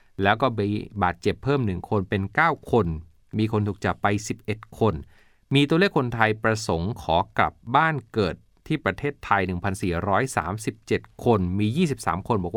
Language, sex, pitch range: Thai, male, 95-130 Hz